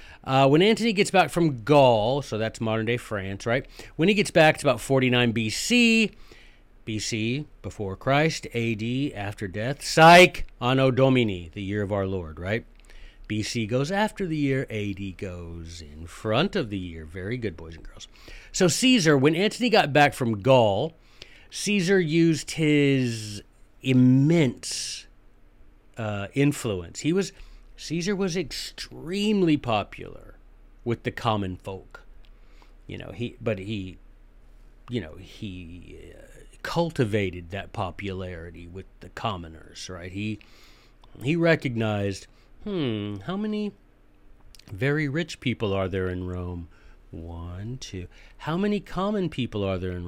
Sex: male